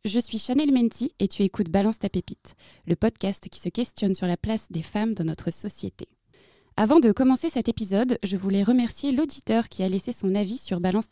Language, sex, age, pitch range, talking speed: French, female, 20-39, 190-235 Hz, 210 wpm